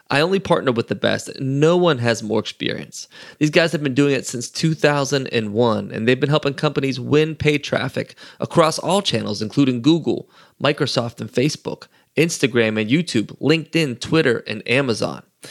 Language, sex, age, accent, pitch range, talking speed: English, male, 20-39, American, 120-155 Hz, 165 wpm